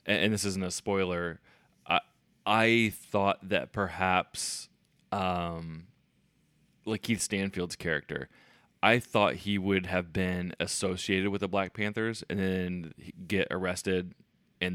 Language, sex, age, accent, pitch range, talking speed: English, male, 20-39, American, 85-100 Hz, 125 wpm